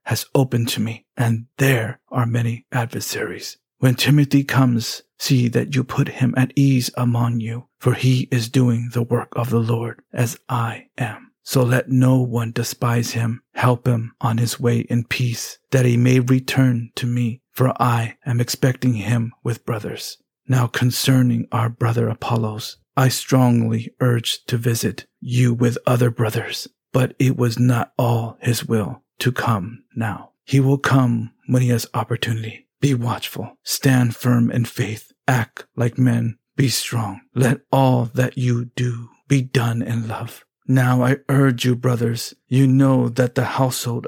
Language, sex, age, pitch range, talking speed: English, male, 50-69, 115-130 Hz, 165 wpm